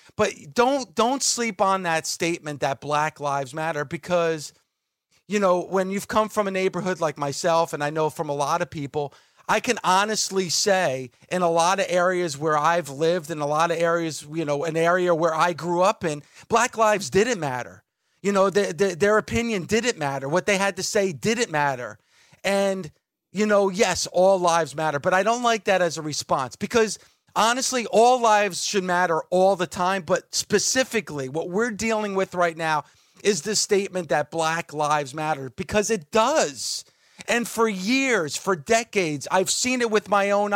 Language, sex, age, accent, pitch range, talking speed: English, male, 40-59, American, 170-210 Hz, 185 wpm